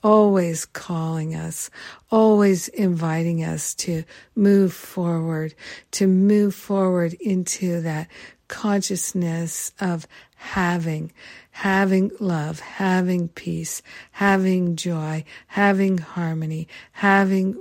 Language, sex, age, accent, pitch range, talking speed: English, female, 60-79, American, 165-195 Hz, 90 wpm